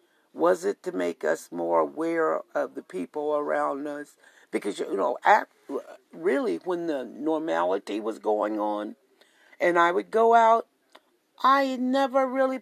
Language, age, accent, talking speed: English, 60-79, American, 145 wpm